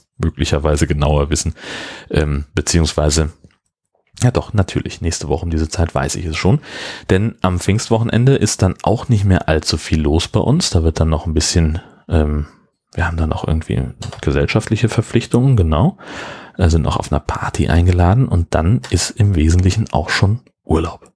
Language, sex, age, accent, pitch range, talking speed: German, male, 40-59, German, 80-105 Hz, 165 wpm